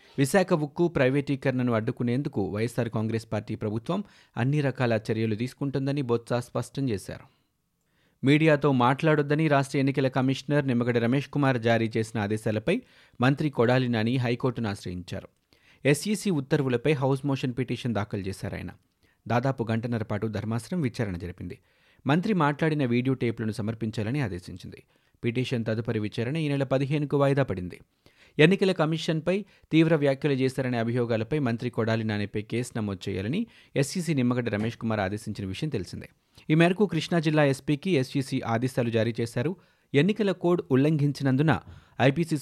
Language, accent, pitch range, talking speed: Telugu, native, 110-145 Hz, 125 wpm